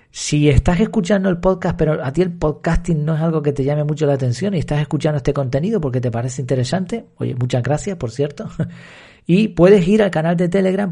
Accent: Argentinian